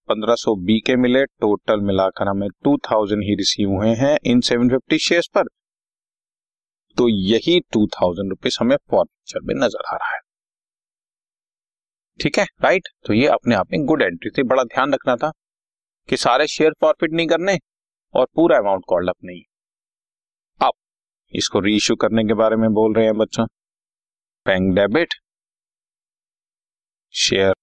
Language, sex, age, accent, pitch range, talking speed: Hindi, male, 30-49, native, 95-125 Hz, 150 wpm